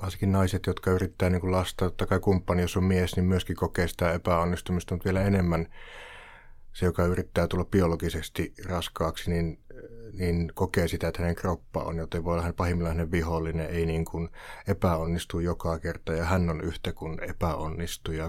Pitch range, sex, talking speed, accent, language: 80-95 Hz, male, 165 wpm, native, Finnish